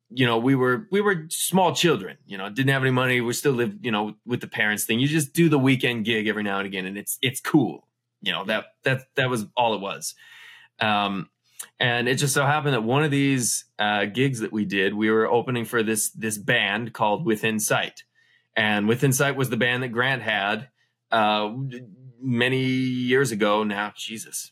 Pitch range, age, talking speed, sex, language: 110-140 Hz, 20-39, 210 wpm, male, English